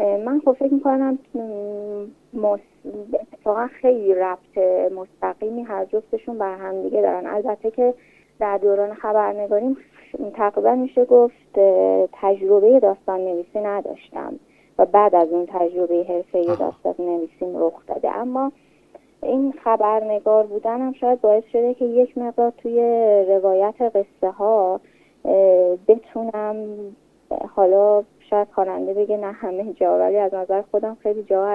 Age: 30-49